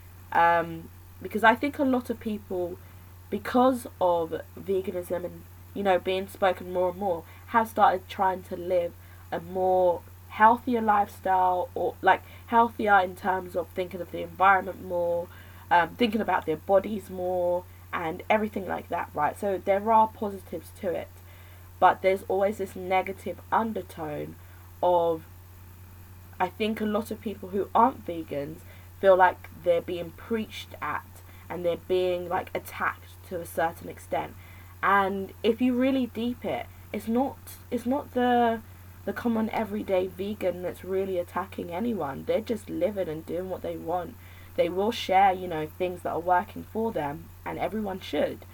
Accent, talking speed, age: British, 160 wpm, 20-39